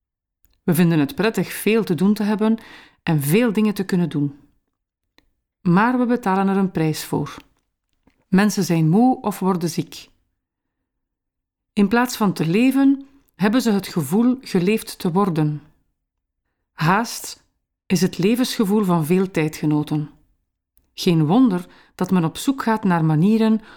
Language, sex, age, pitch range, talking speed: Dutch, female, 40-59, 160-230 Hz, 140 wpm